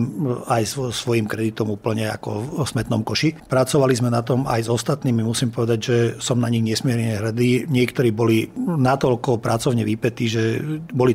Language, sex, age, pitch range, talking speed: Slovak, male, 40-59, 115-125 Hz, 160 wpm